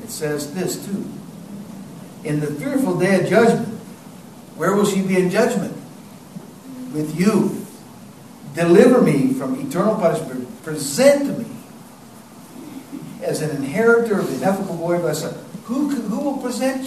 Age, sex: 60-79, male